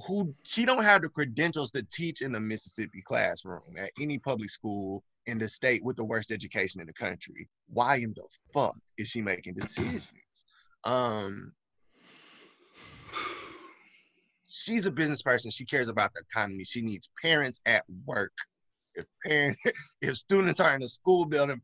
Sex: male